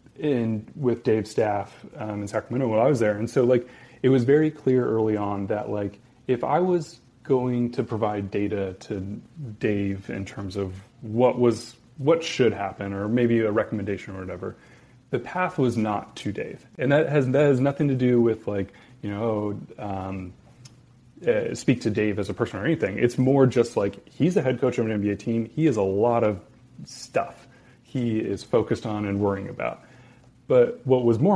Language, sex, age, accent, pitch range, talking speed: English, male, 20-39, American, 105-130 Hz, 195 wpm